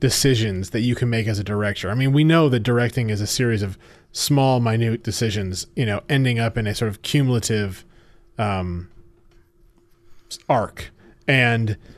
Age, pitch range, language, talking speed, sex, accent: 30-49, 115-140 Hz, English, 165 wpm, male, American